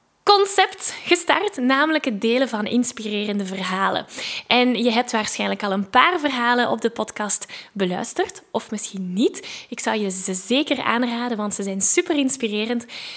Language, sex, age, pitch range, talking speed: Dutch, female, 10-29, 210-265 Hz, 155 wpm